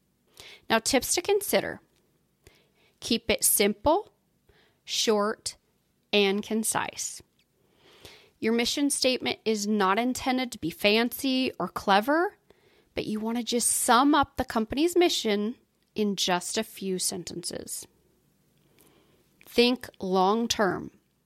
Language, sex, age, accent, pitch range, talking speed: English, female, 30-49, American, 205-300 Hz, 105 wpm